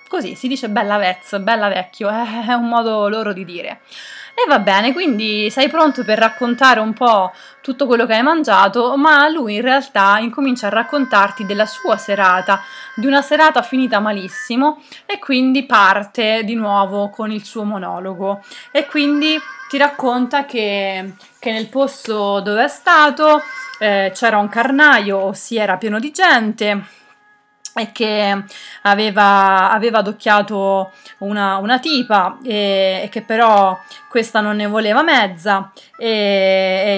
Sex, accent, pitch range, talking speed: female, native, 200-260 Hz, 150 wpm